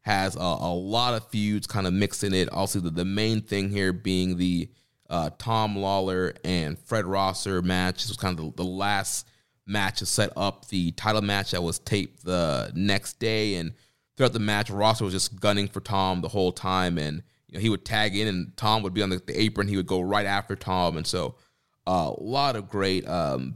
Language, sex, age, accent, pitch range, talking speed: English, male, 30-49, American, 95-115 Hz, 220 wpm